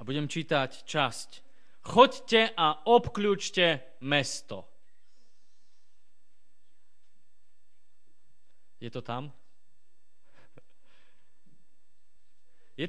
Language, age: Slovak, 20-39